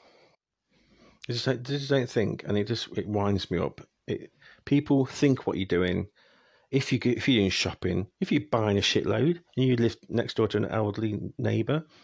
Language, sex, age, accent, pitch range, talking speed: English, male, 40-59, British, 95-125 Hz, 200 wpm